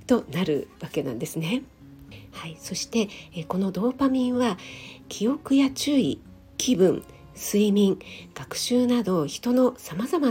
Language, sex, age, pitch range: Japanese, female, 50-69, 165-240 Hz